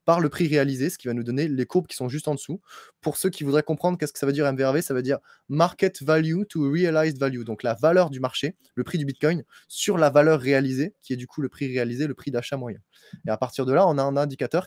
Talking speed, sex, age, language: 280 wpm, male, 20-39, French